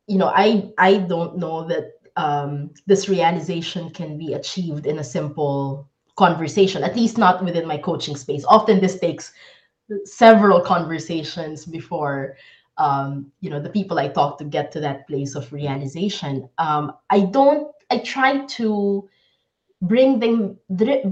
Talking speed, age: 150 wpm, 20-39